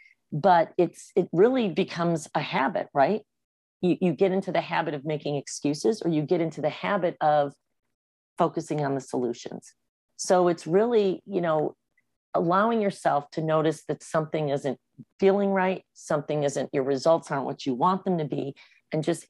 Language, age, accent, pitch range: English, 40-59, American, 145-185 Hz